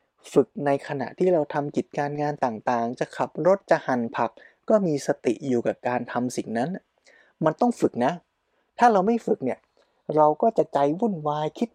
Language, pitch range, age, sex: Thai, 130-175 Hz, 20-39, male